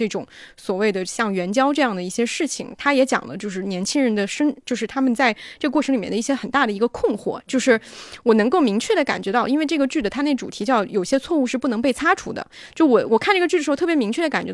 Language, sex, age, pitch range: Chinese, female, 20-39, 210-275 Hz